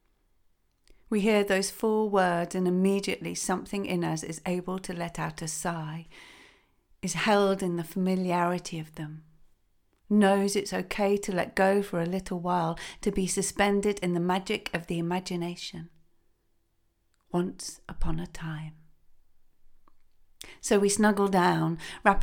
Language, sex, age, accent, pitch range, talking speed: English, female, 40-59, British, 170-205 Hz, 140 wpm